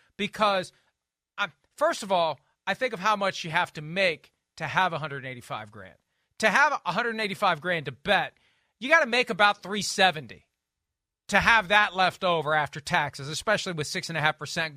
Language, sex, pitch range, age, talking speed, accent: English, male, 155-225 Hz, 40-59, 160 wpm, American